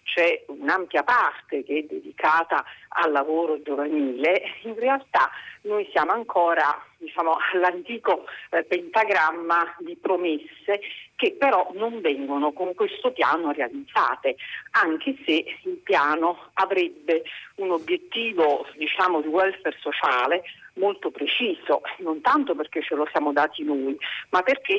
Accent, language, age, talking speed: native, Italian, 50-69, 120 wpm